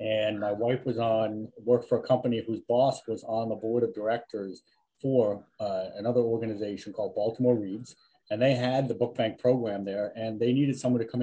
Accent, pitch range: American, 110-130 Hz